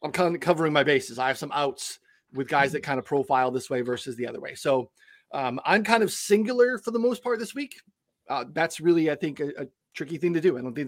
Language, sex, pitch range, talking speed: English, male, 135-175 Hz, 265 wpm